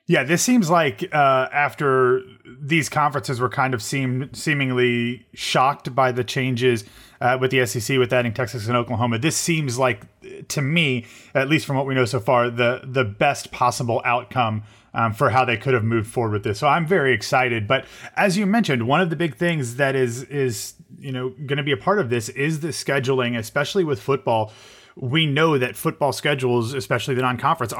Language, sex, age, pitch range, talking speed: English, male, 30-49, 125-145 Hz, 200 wpm